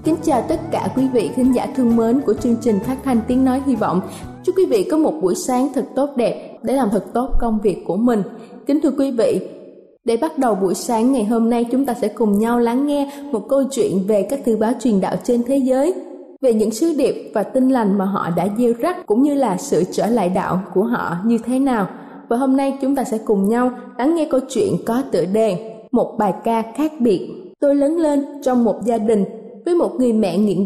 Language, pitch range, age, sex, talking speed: Vietnamese, 220-275 Hz, 20-39, female, 245 wpm